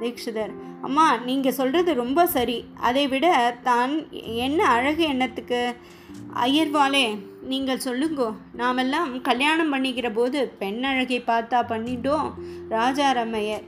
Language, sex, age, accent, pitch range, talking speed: Tamil, female, 20-39, native, 225-280 Hz, 110 wpm